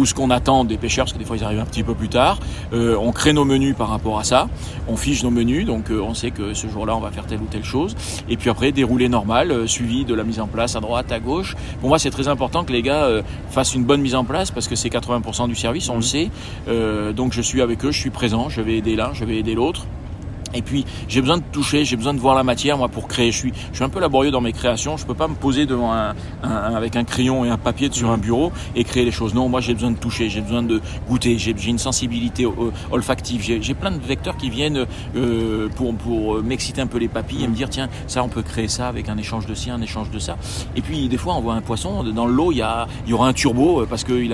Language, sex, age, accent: French, male, 40-59, French